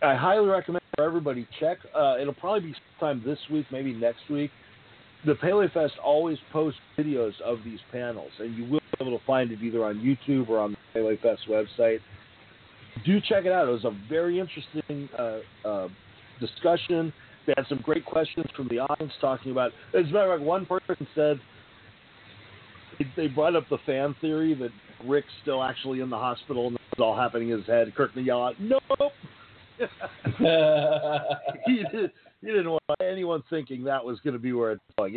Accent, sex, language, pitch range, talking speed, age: American, male, English, 115-155 Hz, 190 wpm, 40-59